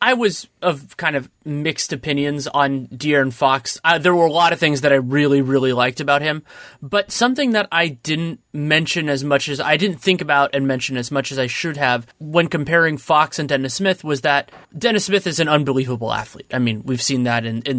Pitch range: 135-170 Hz